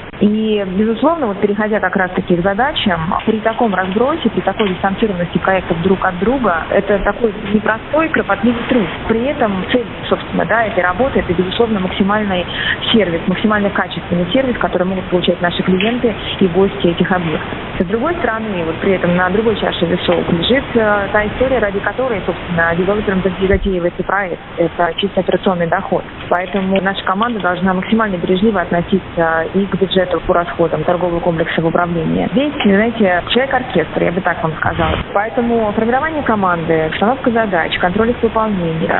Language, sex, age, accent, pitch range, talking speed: Russian, female, 20-39, native, 180-220 Hz, 155 wpm